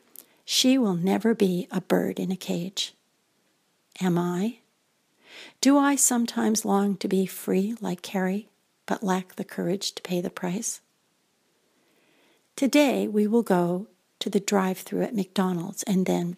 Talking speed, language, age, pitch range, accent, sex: 145 wpm, English, 60-79, 185-220 Hz, American, female